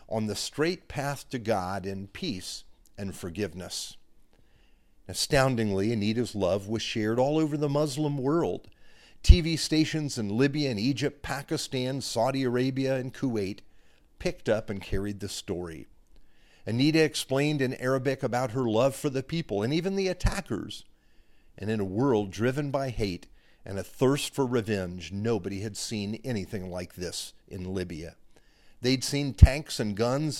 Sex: male